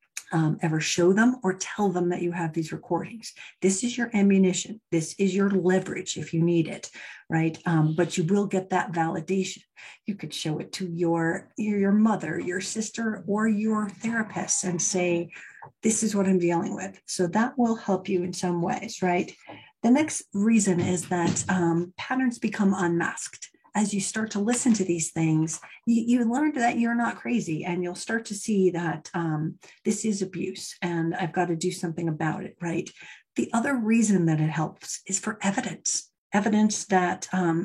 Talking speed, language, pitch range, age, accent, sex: 185 wpm, English, 170-210 Hz, 50-69, American, female